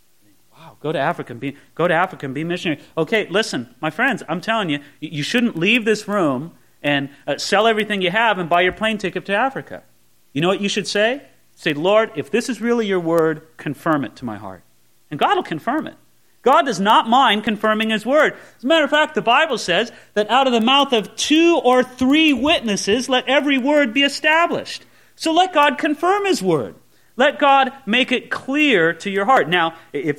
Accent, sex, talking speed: American, male, 210 wpm